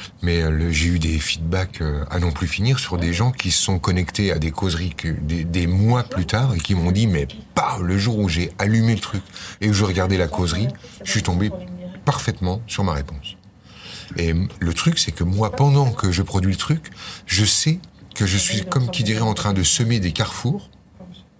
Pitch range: 85-105 Hz